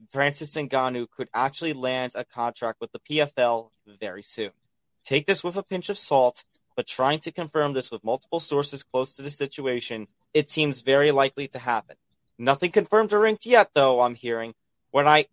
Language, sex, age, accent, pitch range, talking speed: English, male, 30-49, American, 115-145 Hz, 185 wpm